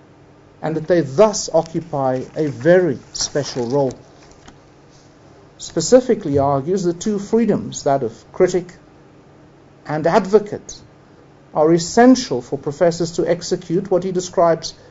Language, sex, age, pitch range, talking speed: English, male, 50-69, 140-175 Hz, 105 wpm